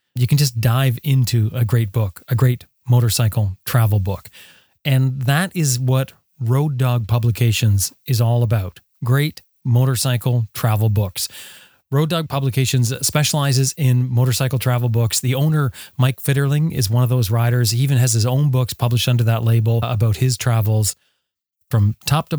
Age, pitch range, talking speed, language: 30-49, 115-135 Hz, 160 wpm, English